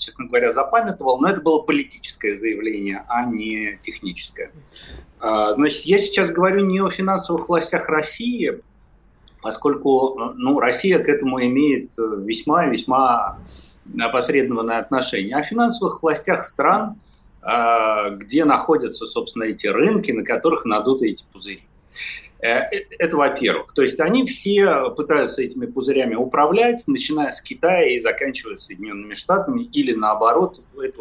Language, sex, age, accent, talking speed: Russian, male, 30-49, native, 125 wpm